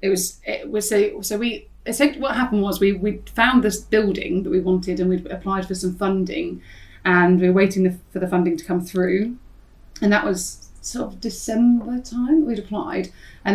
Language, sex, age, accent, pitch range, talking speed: English, female, 30-49, British, 175-195 Hz, 215 wpm